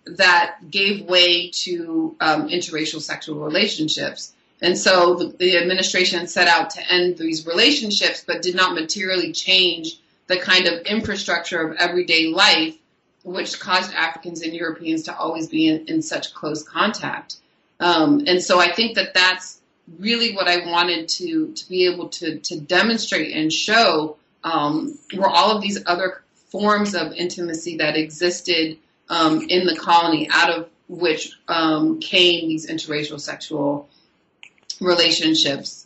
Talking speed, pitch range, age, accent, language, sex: 145 wpm, 165-185 Hz, 30-49, American, English, female